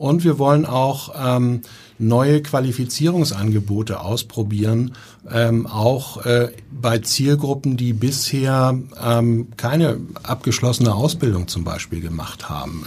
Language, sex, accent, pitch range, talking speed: German, male, German, 105-125 Hz, 105 wpm